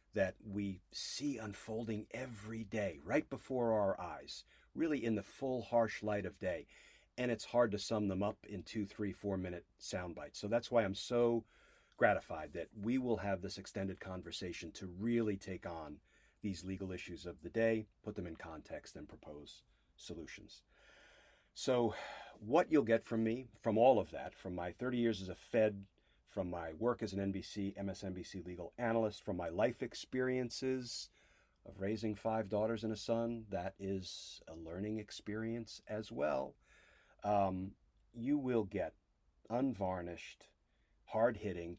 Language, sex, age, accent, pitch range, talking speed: English, male, 40-59, American, 95-115 Hz, 160 wpm